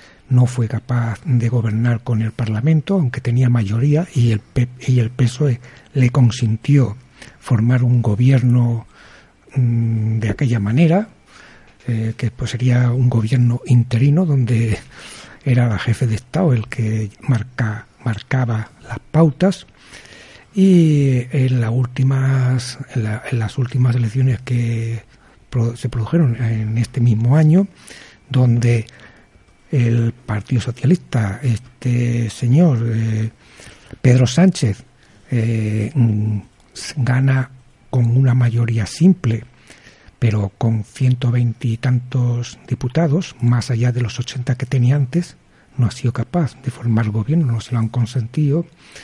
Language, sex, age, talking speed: Spanish, male, 60-79, 115 wpm